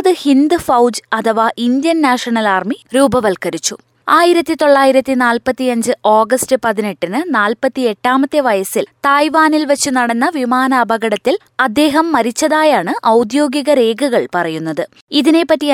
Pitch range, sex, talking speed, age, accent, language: 230-300 Hz, female, 95 wpm, 20-39, native, Malayalam